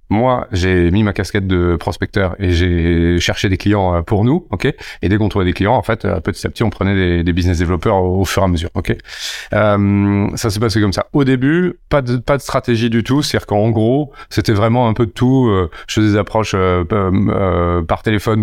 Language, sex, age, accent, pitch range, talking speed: French, male, 30-49, French, 95-115 Hz, 220 wpm